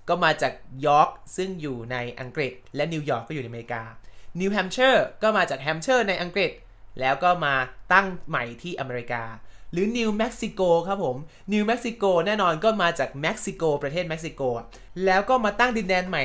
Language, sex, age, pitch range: Thai, male, 20-39, 125-185 Hz